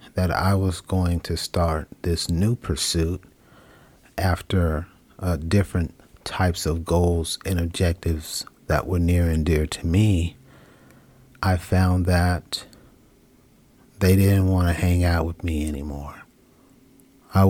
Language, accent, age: English, American, 40-59